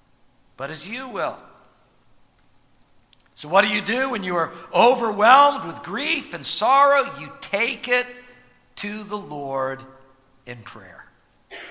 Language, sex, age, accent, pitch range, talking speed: English, male, 60-79, American, 200-285 Hz, 130 wpm